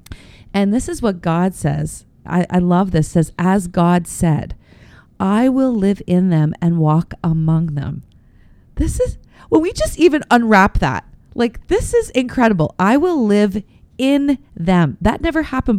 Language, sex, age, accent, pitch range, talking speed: English, female, 30-49, American, 170-215 Hz, 165 wpm